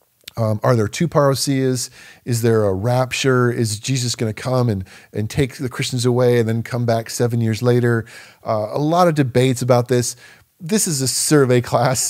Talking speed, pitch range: 195 wpm, 115-155 Hz